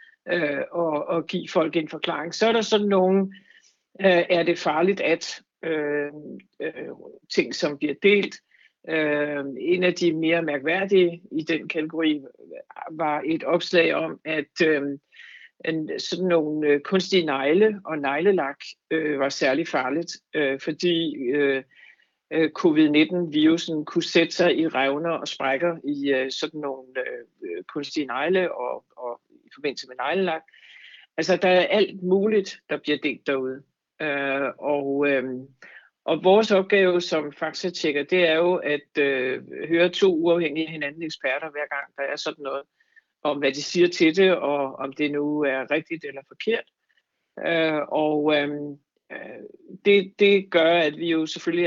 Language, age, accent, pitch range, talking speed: Danish, 60-79, native, 145-175 Hz, 155 wpm